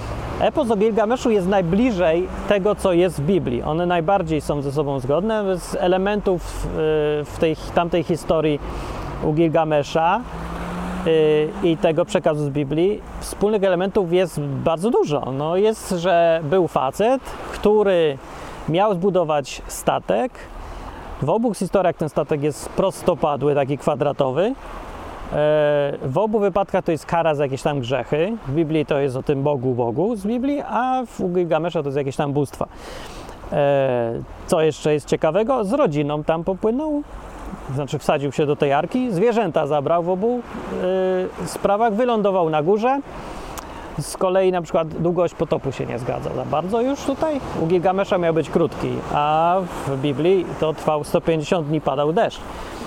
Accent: native